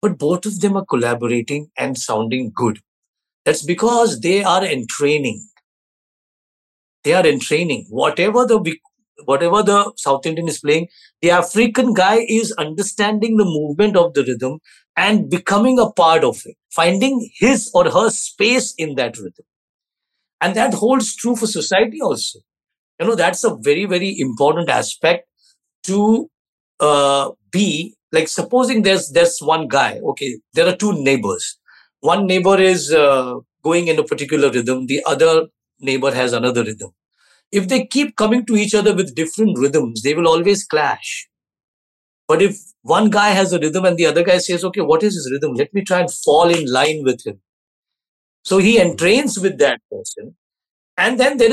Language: English